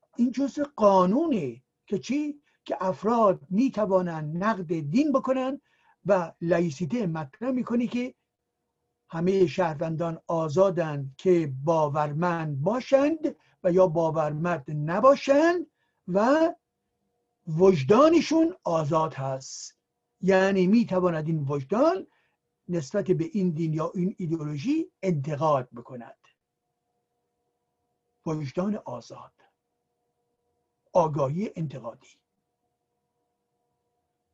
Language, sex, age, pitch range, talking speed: Persian, male, 60-79, 160-250 Hz, 85 wpm